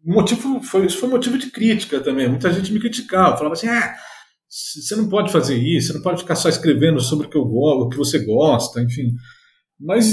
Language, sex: Portuguese, male